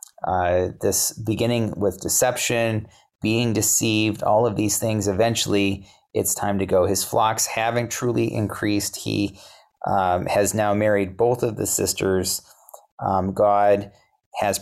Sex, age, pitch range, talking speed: male, 30-49, 95-115 Hz, 135 wpm